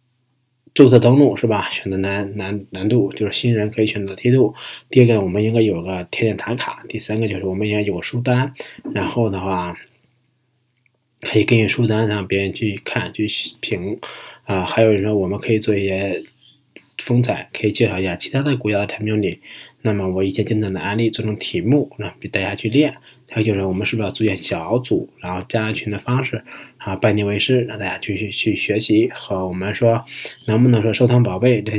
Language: Chinese